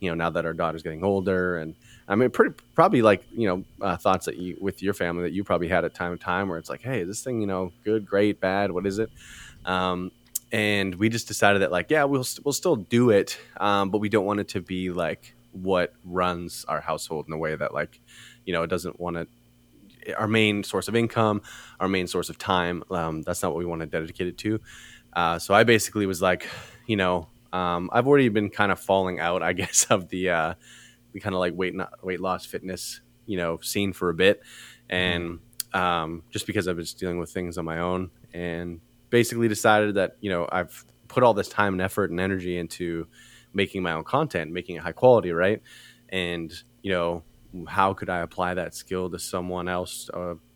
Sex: male